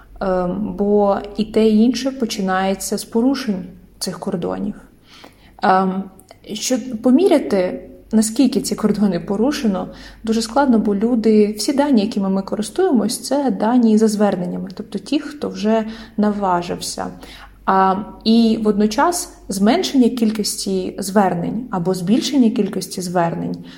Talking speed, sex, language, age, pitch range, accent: 110 wpm, female, Ukrainian, 20-39, 190-230 Hz, native